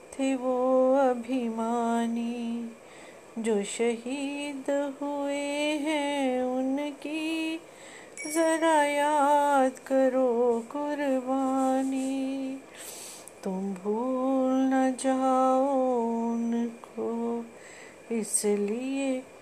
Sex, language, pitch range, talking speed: female, Hindi, 230-270 Hz, 55 wpm